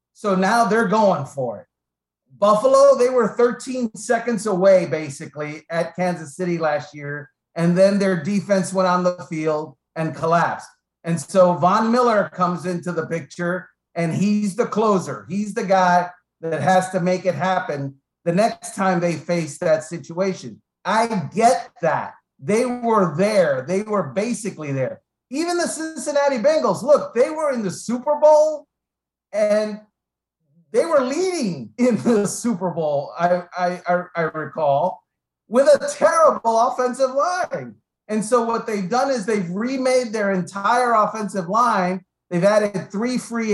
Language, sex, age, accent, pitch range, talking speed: English, male, 40-59, American, 180-250 Hz, 150 wpm